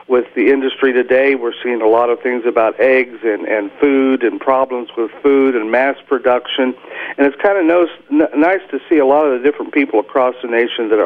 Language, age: English, 50-69